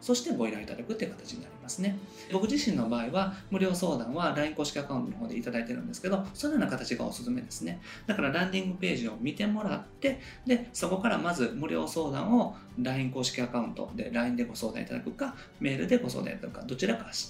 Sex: male